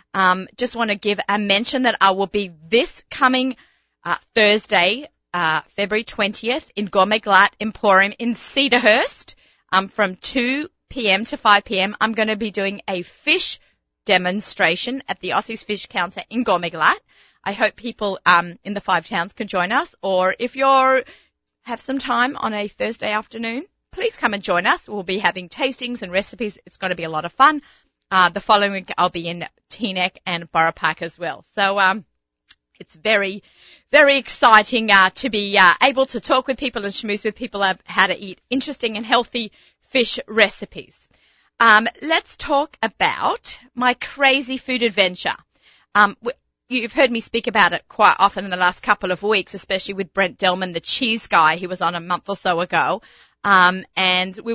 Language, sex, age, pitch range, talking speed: English, female, 30-49, 185-245 Hz, 185 wpm